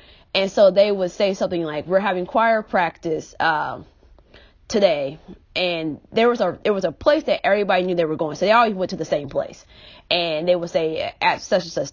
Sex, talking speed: female, 215 wpm